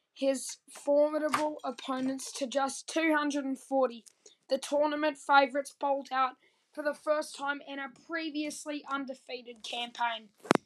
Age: 10-29